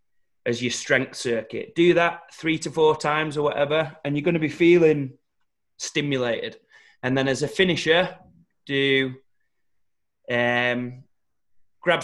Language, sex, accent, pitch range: English, male, British, 130-155 Hz